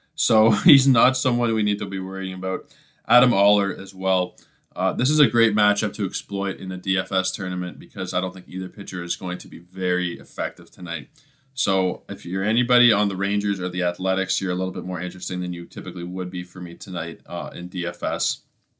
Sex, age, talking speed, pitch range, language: male, 20-39, 210 wpm, 95-120 Hz, English